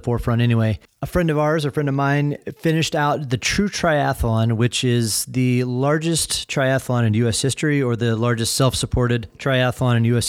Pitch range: 120-155 Hz